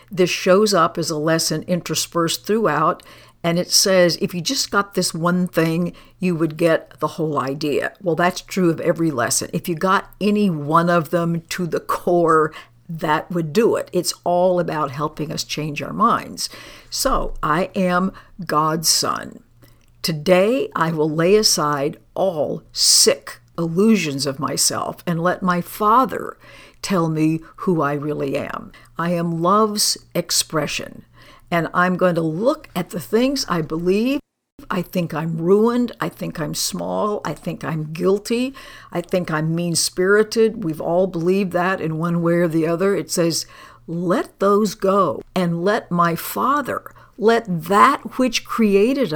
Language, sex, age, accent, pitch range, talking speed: English, female, 60-79, American, 160-195 Hz, 160 wpm